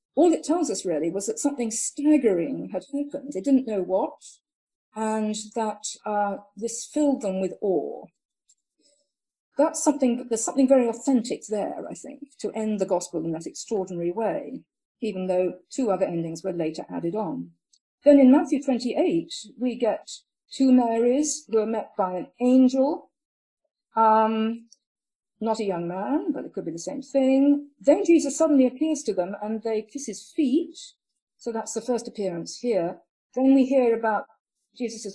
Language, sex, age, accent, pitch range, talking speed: English, female, 50-69, British, 195-275 Hz, 165 wpm